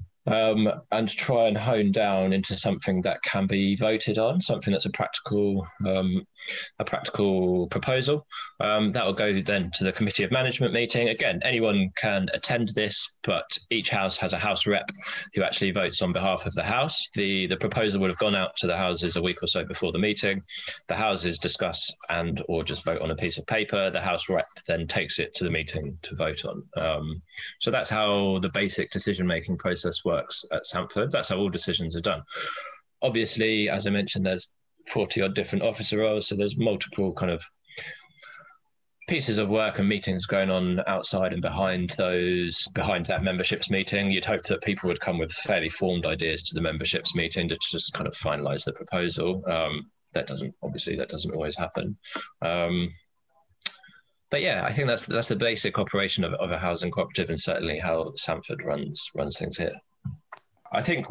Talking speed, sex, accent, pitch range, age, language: 190 wpm, male, British, 95-110 Hz, 20-39, English